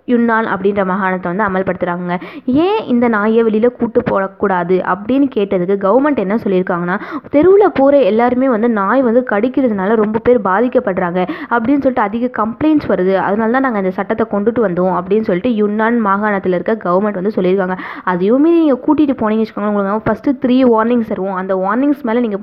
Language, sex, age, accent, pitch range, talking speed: Tamil, female, 20-39, native, 190-255 Hz, 160 wpm